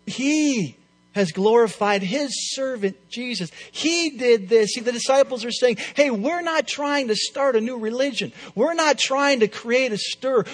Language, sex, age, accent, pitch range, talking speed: English, male, 50-69, American, 185-250 Hz, 170 wpm